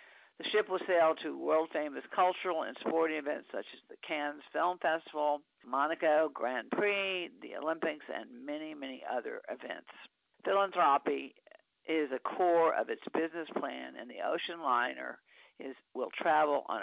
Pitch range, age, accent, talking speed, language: 145-180 Hz, 50-69, American, 150 wpm, English